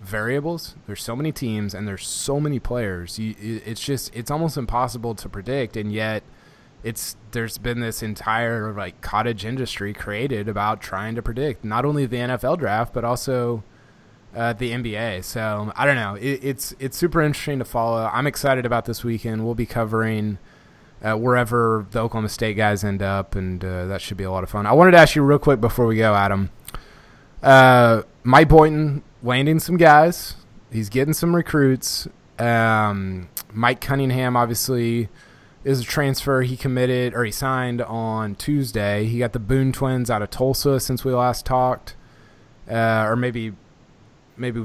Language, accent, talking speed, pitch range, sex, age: English, American, 175 wpm, 105-130 Hz, male, 20-39